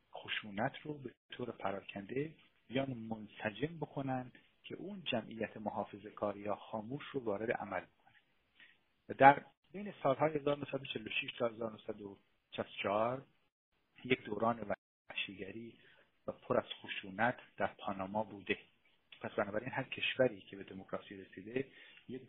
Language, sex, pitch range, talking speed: Persian, male, 100-130 Hz, 115 wpm